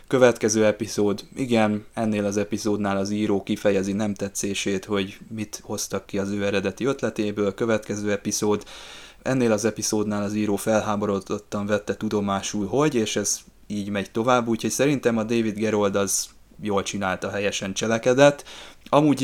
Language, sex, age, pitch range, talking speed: Hungarian, male, 20-39, 100-115 Hz, 145 wpm